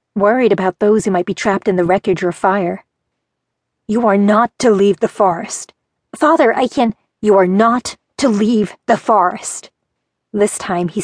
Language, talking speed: English, 175 wpm